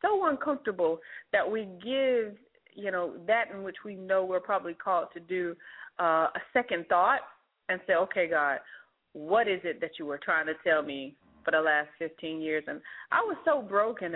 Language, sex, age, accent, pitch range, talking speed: English, female, 30-49, American, 160-200 Hz, 185 wpm